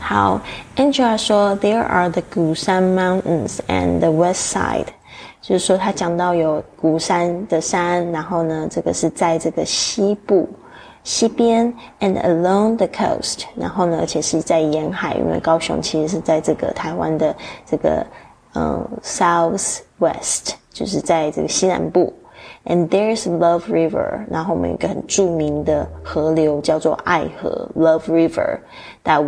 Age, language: 20-39, Chinese